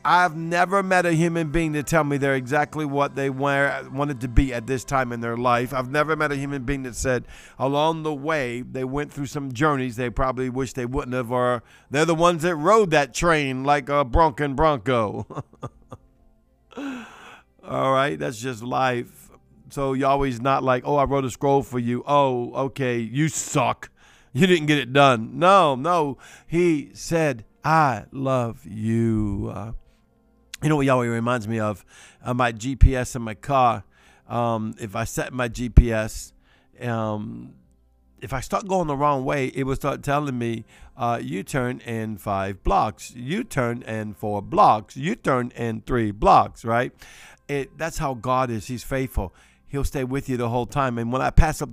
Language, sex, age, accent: English, male, 50-69, American